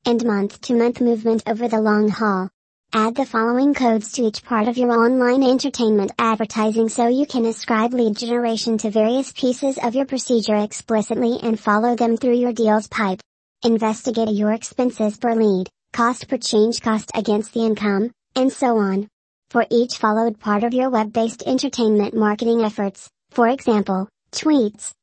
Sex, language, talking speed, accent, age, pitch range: male, English, 160 wpm, American, 40-59, 215-240 Hz